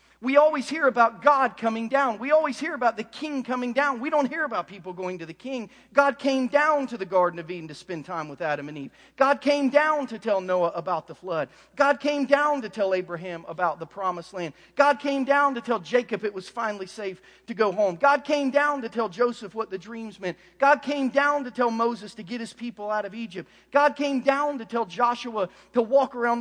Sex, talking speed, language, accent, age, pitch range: male, 235 wpm, English, American, 40-59, 200-275 Hz